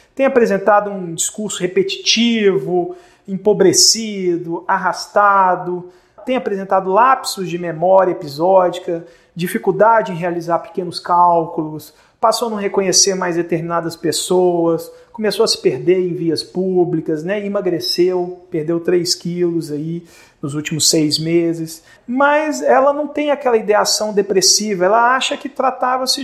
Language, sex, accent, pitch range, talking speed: Portuguese, male, Brazilian, 170-235 Hz, 120 wpm